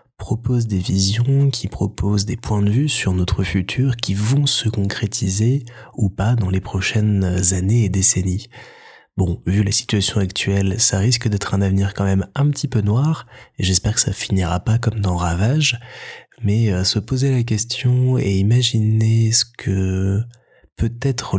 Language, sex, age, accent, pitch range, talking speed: French, male, 20-39, French, 95-115 Hz, 170 wpm